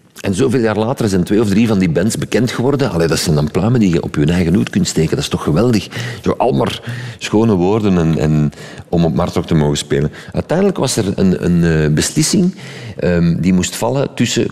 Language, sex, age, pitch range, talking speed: Dutch, male, 50-69, 85-125 Hz, 220 wpm